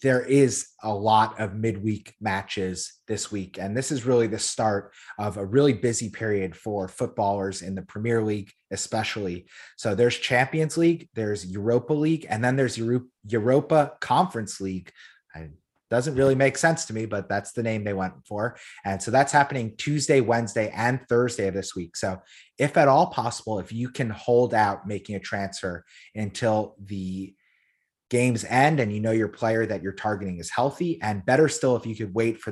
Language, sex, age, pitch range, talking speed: English, male, 30-49, 100-130 Hz, 185 wpm